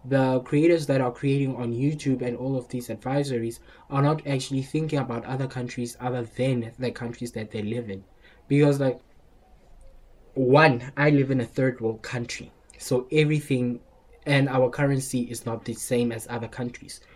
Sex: male